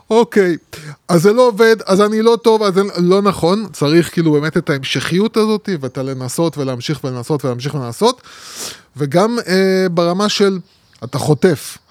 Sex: male